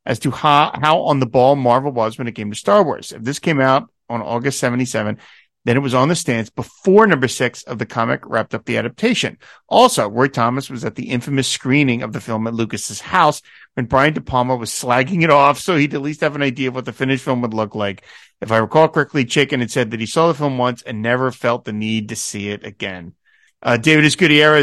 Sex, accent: male, American